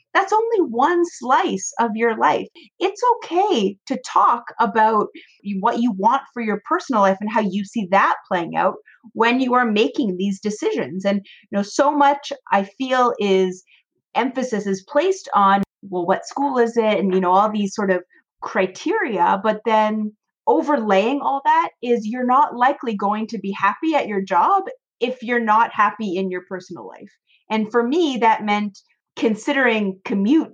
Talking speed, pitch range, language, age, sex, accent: 175 wpm, 200-285 Hz, English, 30-49, female, American